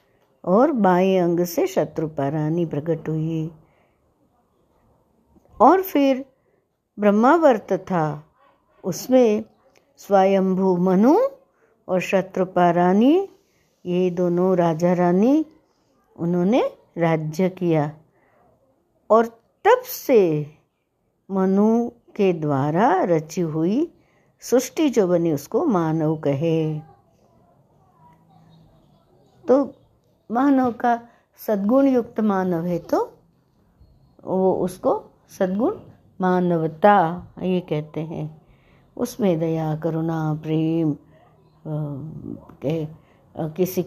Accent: native